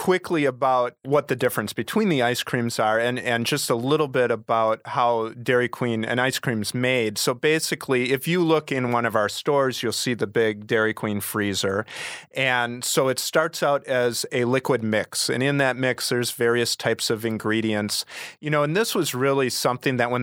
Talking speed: 205 wpm